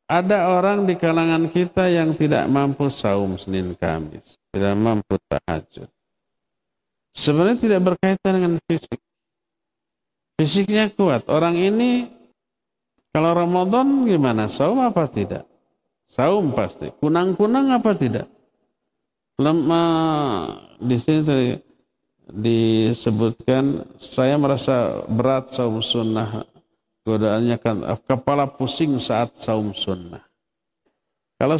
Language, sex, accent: Indonesian, male, native